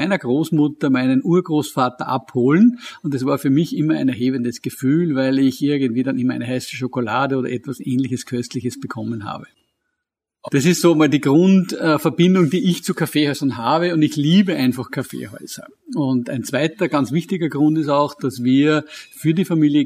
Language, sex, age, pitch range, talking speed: German, male, 50-69, 130-160 Hz, 170 wpm